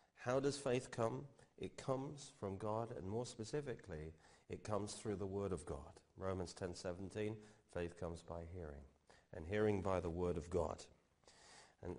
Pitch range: 85-115 Hz